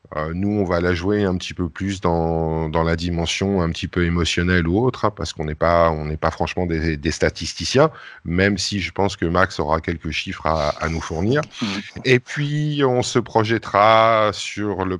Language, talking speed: French, 190 wpm